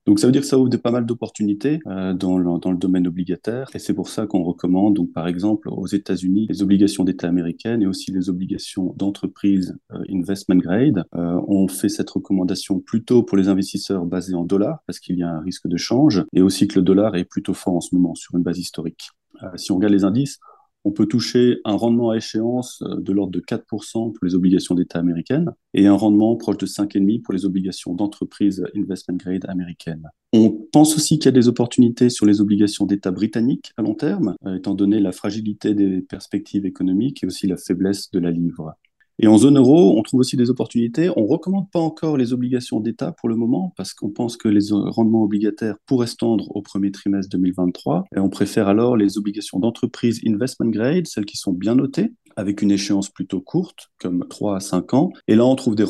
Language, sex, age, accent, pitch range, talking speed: English, male, 30-49, French, 95-115 Hz, 215 wpm